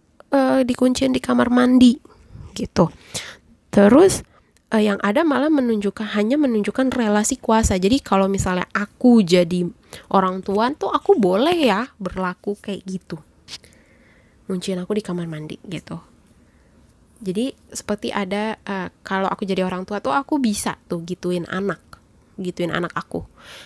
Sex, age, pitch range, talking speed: female, 20-39, 175-215 Hz, 130 wpm